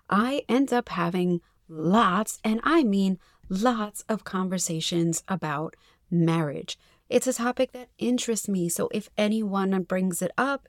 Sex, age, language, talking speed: female, 30-49, English, 140 wpm